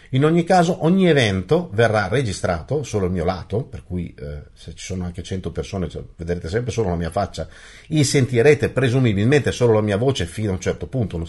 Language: Italian